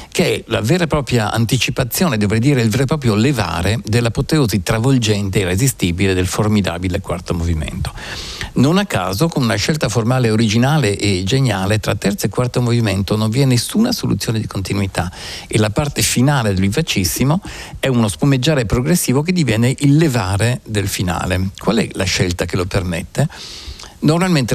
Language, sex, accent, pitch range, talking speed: Italian, male, native, 95-135 Hz, 165 wpm